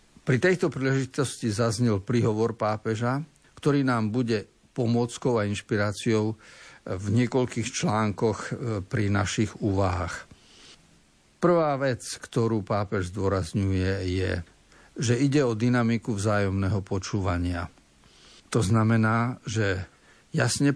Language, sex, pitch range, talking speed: Slovak, male, 105-135 Hz, 100 wpm